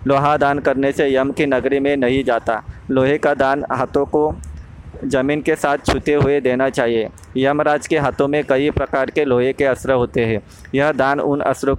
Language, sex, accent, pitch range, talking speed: Hindi, male, native, 125-145 Hz, 195 wpm